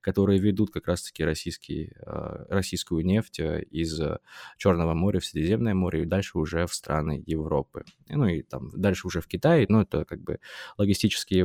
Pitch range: 85-105 Hz